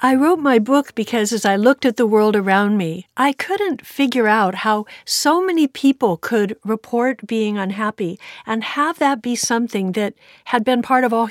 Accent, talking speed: American, 190 wpm